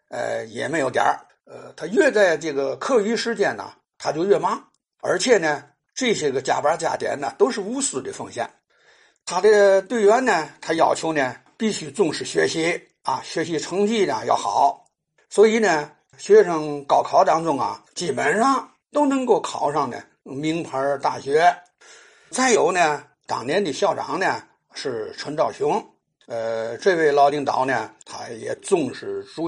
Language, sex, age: Chinese, male, 60-79